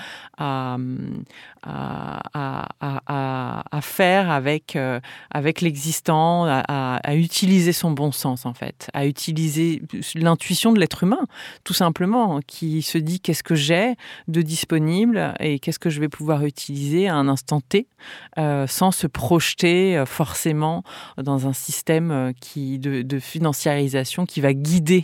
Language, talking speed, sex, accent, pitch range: French, 145 wpm, female, French, 135-160 Hz